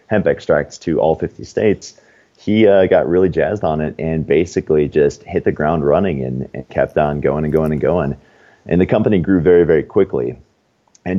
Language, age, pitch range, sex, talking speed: English, 30-49, 75-85 Hz, male, 200 wpm